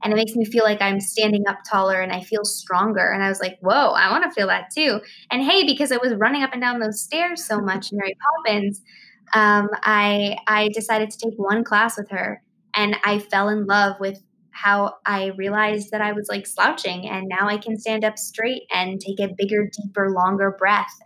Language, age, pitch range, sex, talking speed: English, 20-39, 195-215 Hz, female, 225 wpm